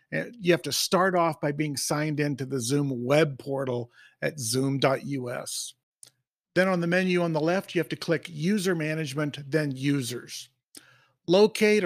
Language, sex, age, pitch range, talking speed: English, male, 50-69, 140-180 Hz, 160 wpm